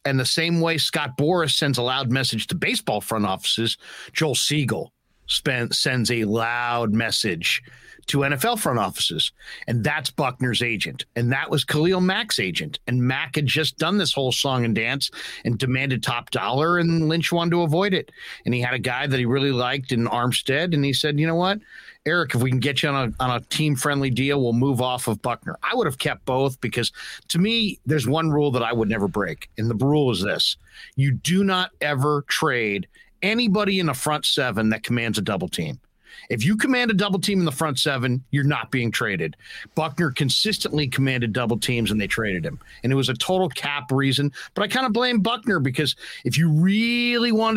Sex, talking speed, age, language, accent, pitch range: male, 210 wpm, 50-69, English, American, 125-165 Hz